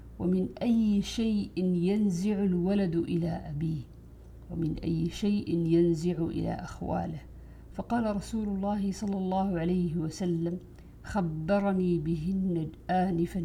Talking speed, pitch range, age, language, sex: 105 wpm, 165-195 Hz, 50-69, Arabic, female